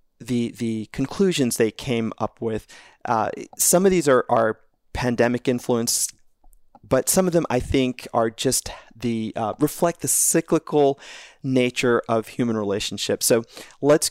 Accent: American